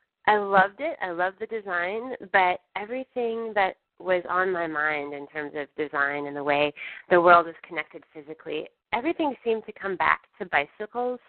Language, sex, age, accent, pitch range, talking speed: English, female, 20-39, American, 170-215 Hz, 175 wpm